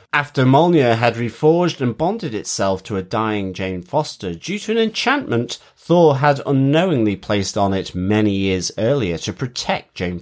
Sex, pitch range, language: male, 115-155 Hz, English